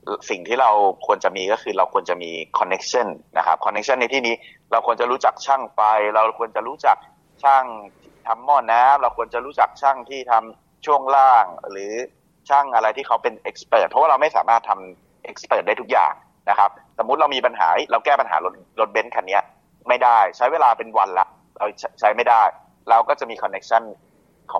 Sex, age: male, 30-49